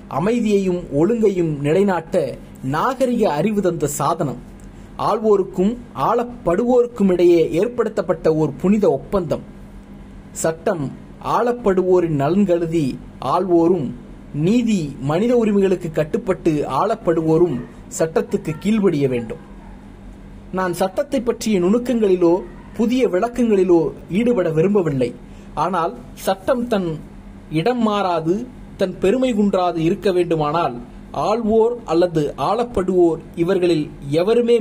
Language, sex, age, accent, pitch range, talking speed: Tamil, male, 30-49, native, 165-225 Hz, 60 wpm